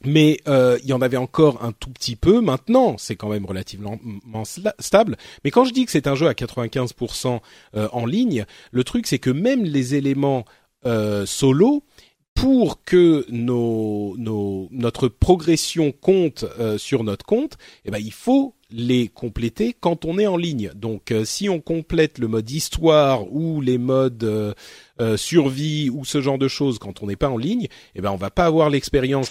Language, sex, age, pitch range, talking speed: French, male, 40-59, 115-165 Hz, 180 wpm